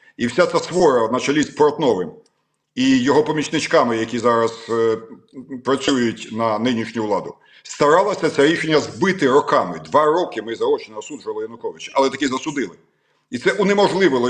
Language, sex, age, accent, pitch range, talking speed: Ukrainian, male, 50-69, native, 130-190 Hz, 160 wpm